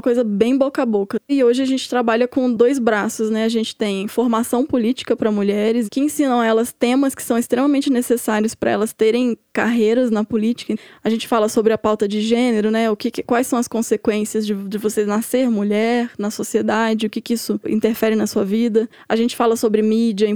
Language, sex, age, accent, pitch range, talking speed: Portuguese, female, 10-29, Brazilian, 215-245 Hz, 210 wpm